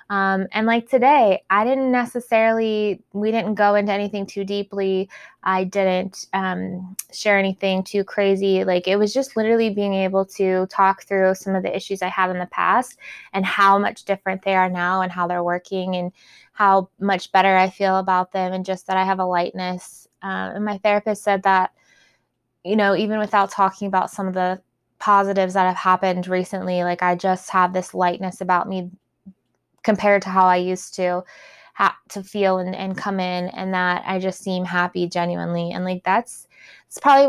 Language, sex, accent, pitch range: English, female, American, 185-205 Hz